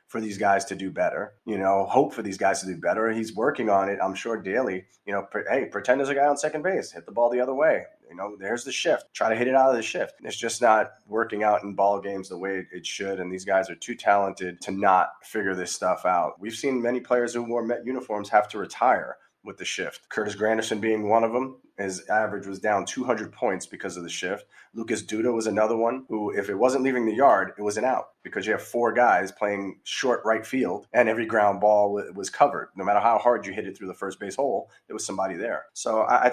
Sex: male